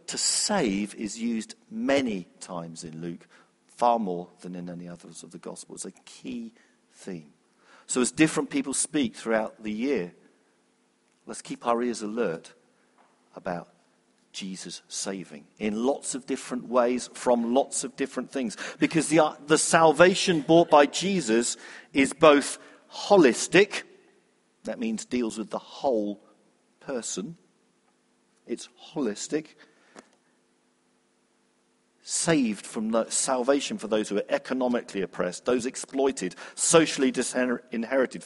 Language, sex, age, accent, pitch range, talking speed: English, male, 50-69, British, 105-150 Hz, 125 wpm